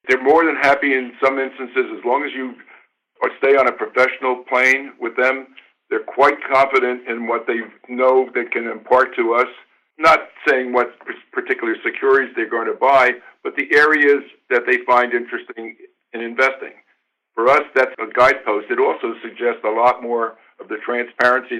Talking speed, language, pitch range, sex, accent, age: 170 wpm, English, 120-145 Hz, male, American, 60-79